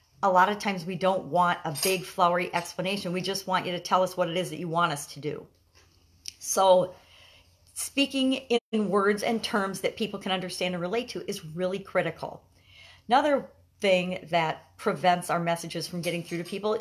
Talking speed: 195 wpm